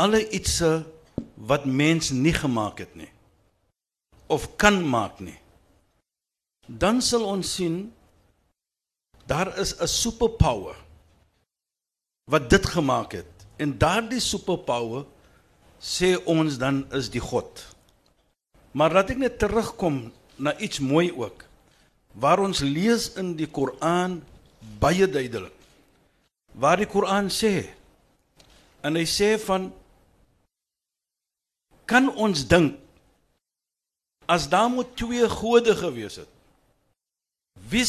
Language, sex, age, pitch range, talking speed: Dutch, male, 60-79, 135-210 Hz, 110 wpm